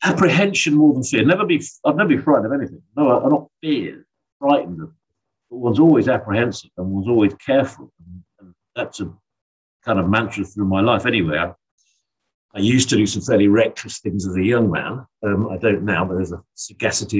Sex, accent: male, British